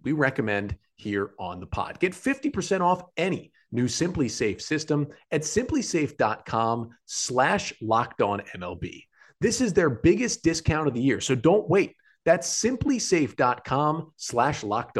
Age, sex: 30-49, male